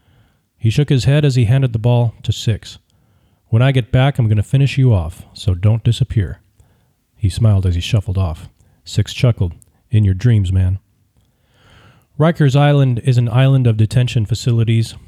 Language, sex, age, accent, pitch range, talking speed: English, male, 40-59, American, 100-125 Hz, 175 wpm